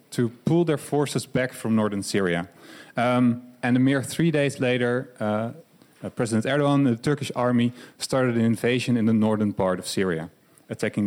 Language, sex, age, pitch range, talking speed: Dutch, male, 30-49, 115-140 Hz, 175 wpm